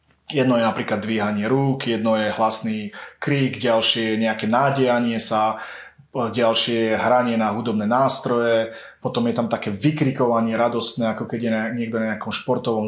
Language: Slovak